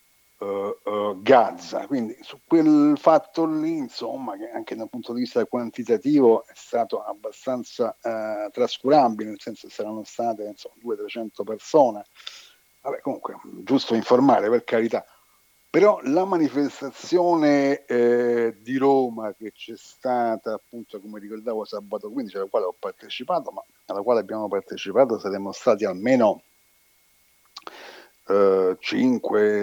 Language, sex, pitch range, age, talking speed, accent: Italian, male, 105-130 Hz, 50-69, 125 wpm, native